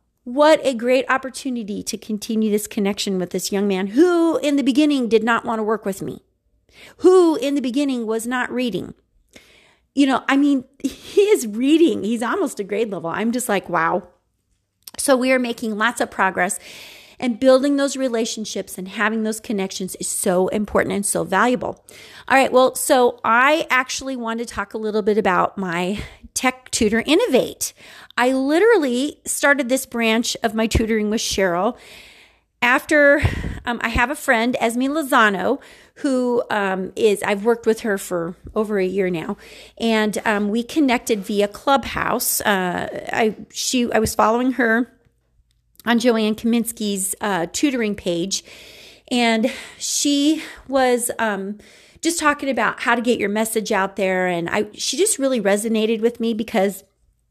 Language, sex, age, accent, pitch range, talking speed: English, female, 40-59, American, 210-265 Hz, 165 wpm